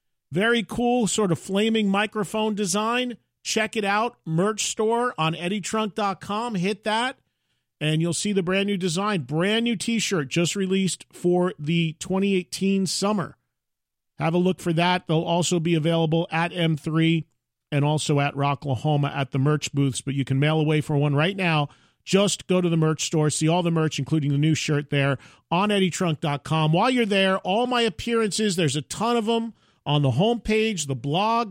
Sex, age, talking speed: male, 40-59, 175 wpm